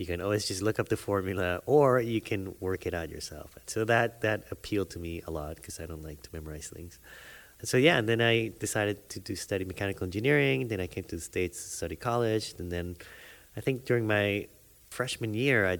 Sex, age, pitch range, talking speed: male, 30-49, 85-105 Hz, 230 wpm